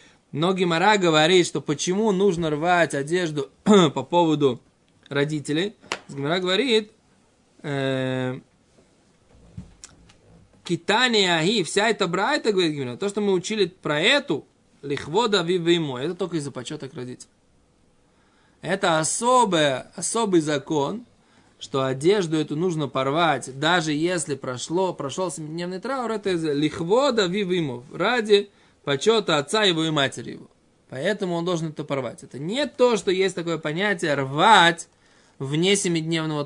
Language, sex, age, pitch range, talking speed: Russian, male, 20-39, 145-200 Hz, 120 wpm